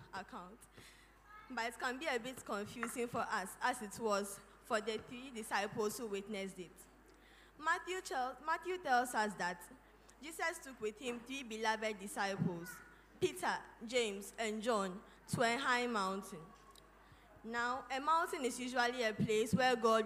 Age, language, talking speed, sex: 20-39, English, 150 wpm, female